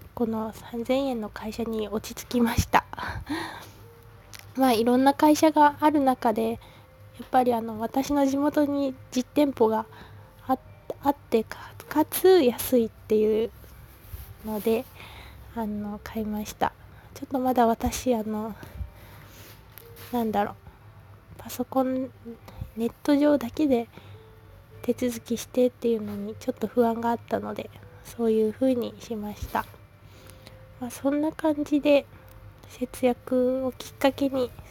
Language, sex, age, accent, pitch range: Japanese, female, 20-39, native, 210-260 Hz